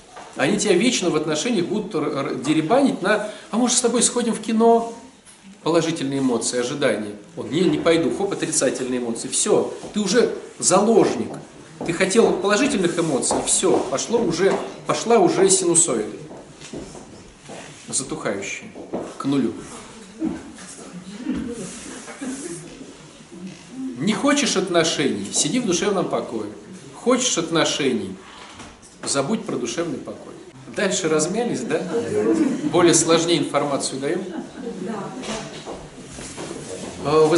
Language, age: Russian, 40-59